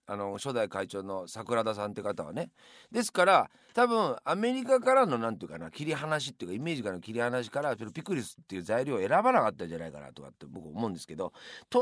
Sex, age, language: male, 40-59, Japanese